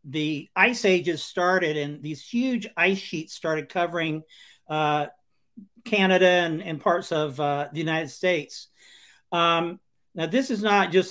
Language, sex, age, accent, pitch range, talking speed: English, male, 50-69, American, 155-200 Hz, 145 wpm